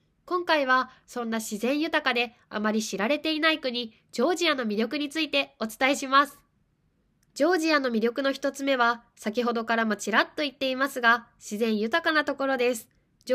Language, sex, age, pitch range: Japanese, female, 20-39, 225-295 Hz